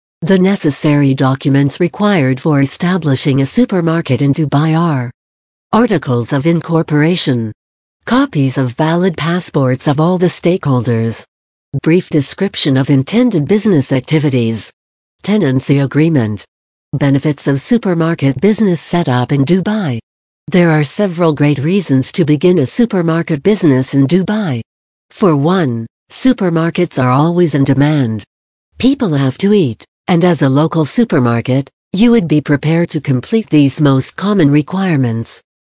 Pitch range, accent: 135-180 Hz, American